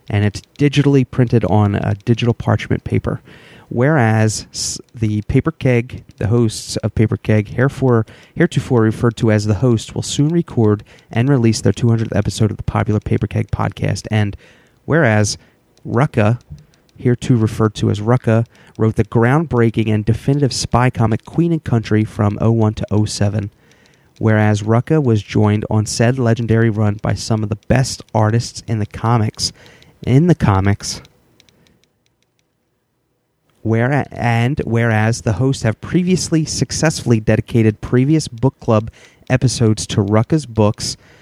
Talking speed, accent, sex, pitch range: 140 wpm, American, male, 110-125 Hz